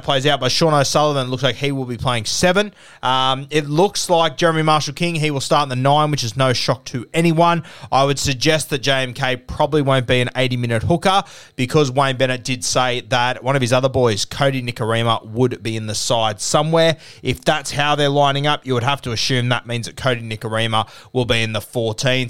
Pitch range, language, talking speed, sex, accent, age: 115-145 Hz, English, 225 wpm, male, Australian, 20-39